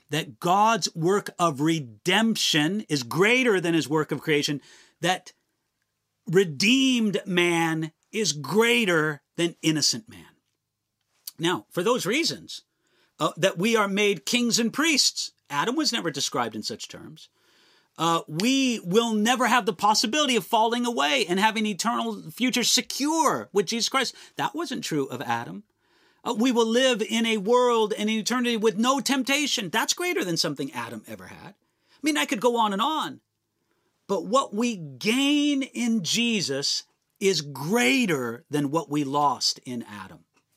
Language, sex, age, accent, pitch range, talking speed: English, male, 40-59, American, 155-240 Hz, 150 wpm